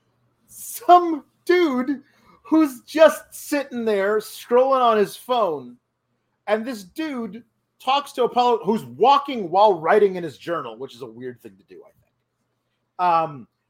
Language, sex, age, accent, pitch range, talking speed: English, male, 40-59, American, 155-250 Hz, 150 wpm